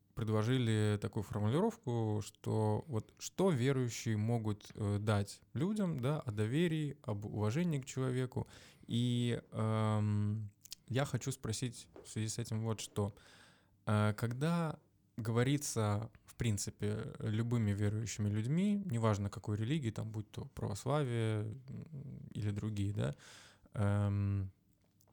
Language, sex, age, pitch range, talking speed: Russian, male, 20-39, 105-125 Hz, 110 wpm